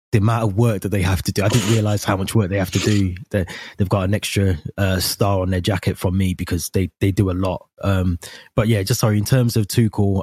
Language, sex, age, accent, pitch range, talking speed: English, male, 20-39, British, 95-105 Hz, 270 wpm